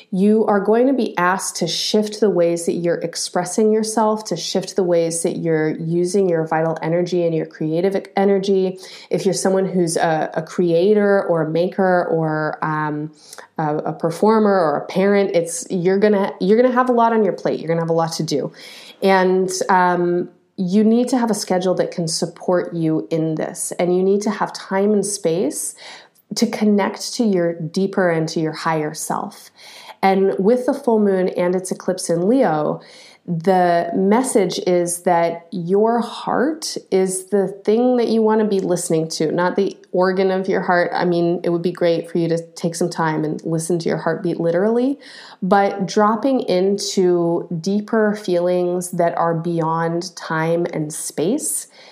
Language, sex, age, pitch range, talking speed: English, female, 30-49, 170-205 Hz, 180 wpm